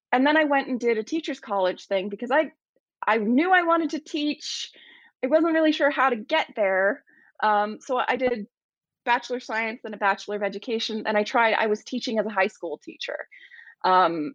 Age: 20-39